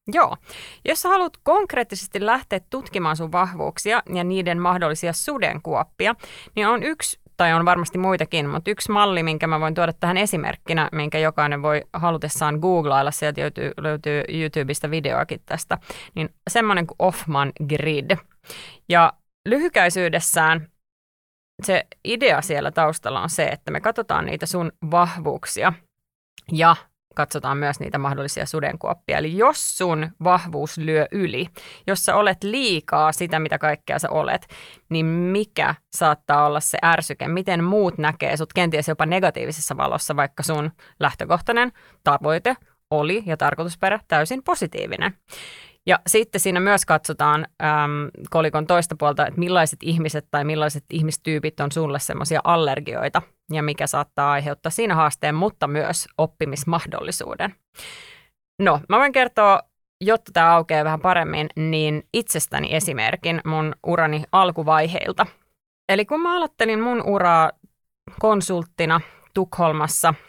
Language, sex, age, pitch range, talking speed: Finnish, female, 30-49, 155-185 Hz, 130 wpm